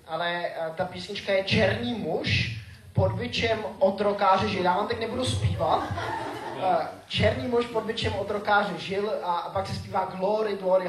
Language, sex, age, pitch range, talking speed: Czech, male, 20-39, 140-195 Hz, 150 wpm